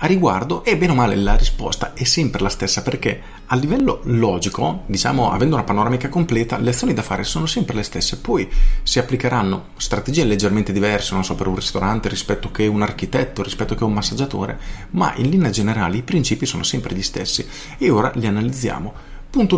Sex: male